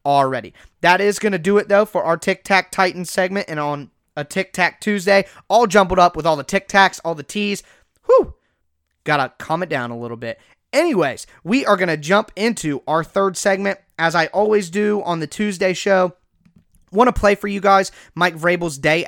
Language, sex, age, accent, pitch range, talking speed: English, male, 20-39, American, 150-190 Hz, 200 wpm